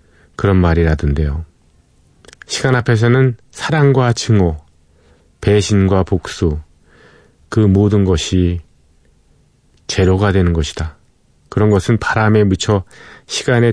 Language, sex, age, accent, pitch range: Korean, male, 40-59, native, 85-115 Hz